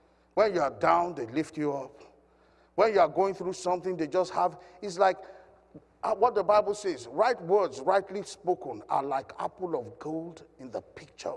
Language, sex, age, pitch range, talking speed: English, male, 50-69, 160-235 Hz, 185 wpm